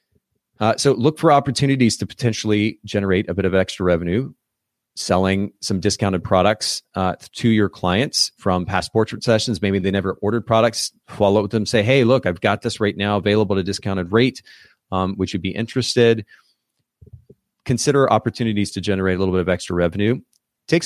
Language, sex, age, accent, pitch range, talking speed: English, male, 30-49, American, 100-120 Hz, 180 wpm